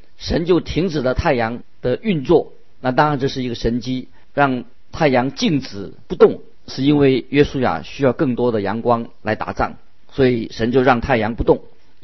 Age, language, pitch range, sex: 50-69, Chinese, 110-140 Hz, male